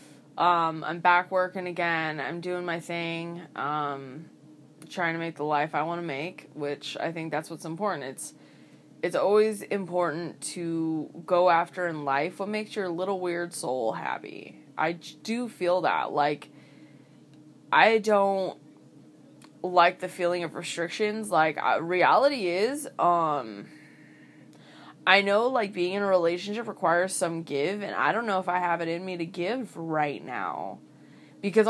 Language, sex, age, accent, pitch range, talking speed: English, female, 20-39, American, 160-185 Hz, 155 wpm